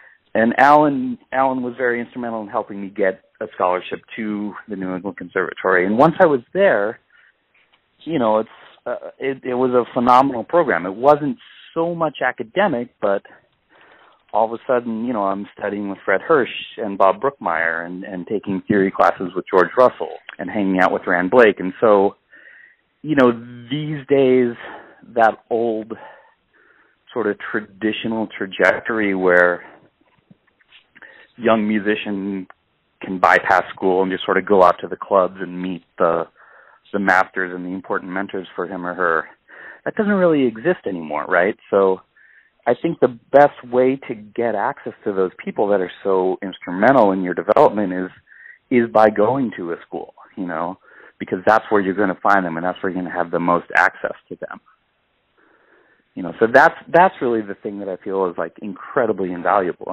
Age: 40-59